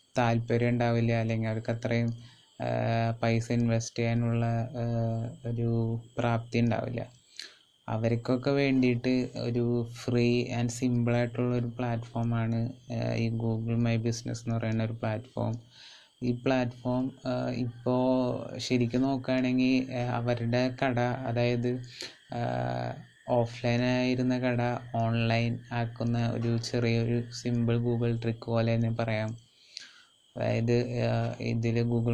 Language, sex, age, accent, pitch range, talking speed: Malayalam, male, 20-39, native, 115-125 Hz, 90 wpm